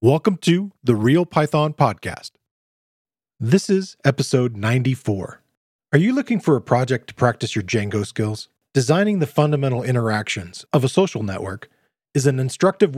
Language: English